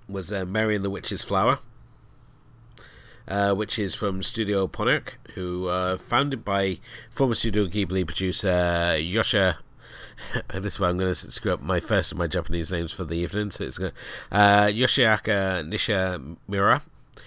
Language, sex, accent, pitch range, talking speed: English, male, British, 90-115 Hz, 155 wpm